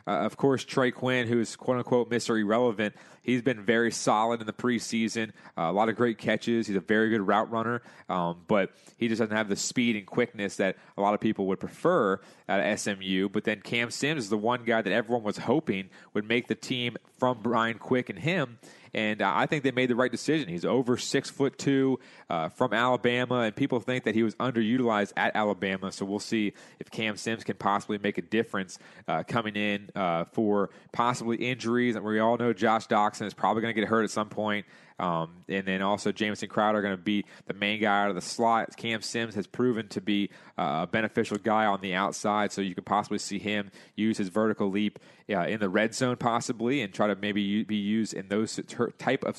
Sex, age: male, 30-49